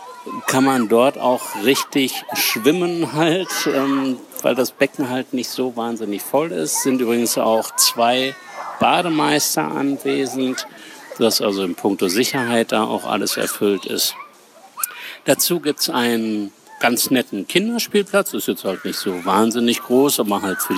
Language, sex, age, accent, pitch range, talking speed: German, male, 60-79, German, 115-160 Hz, 145 wpm